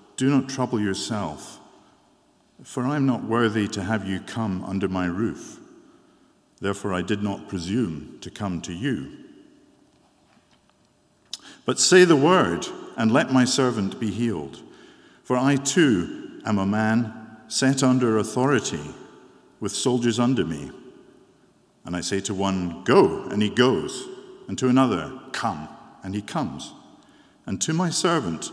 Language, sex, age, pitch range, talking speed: English, male, 50-69, 95-130 Hz, 145 wpm